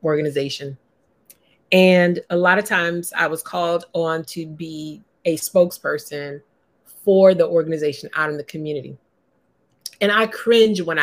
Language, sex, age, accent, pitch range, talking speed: English, female, 30-49, American, 150-190 Hz, 135 wpm